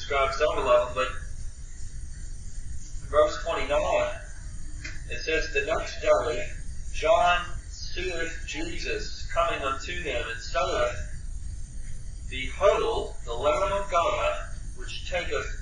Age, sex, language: 40-59, male, English